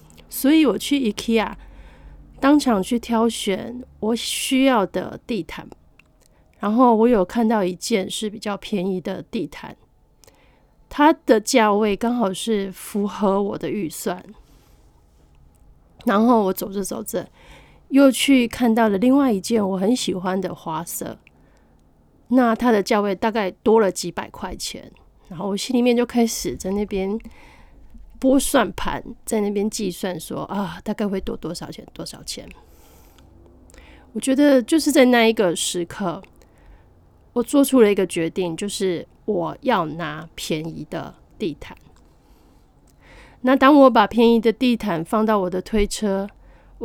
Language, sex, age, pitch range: Chinese, female, 30-49, 185-240 Hz